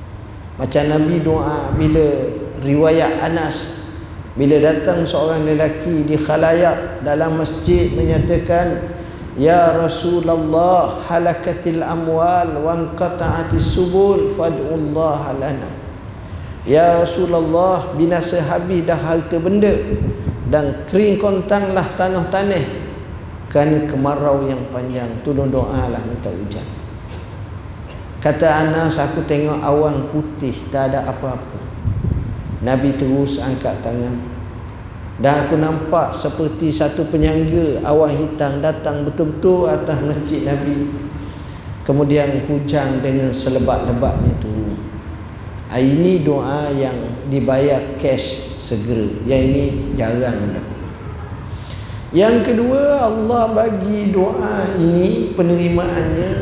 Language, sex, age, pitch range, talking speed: Malay, male, 50-69, 115-165 Hz, 95 wpm